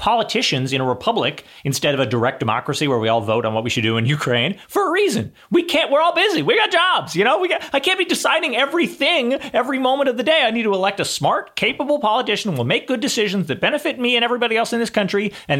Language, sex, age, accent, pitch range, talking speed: English, male, 30-49, American, 125-195 Hz, 255 wpm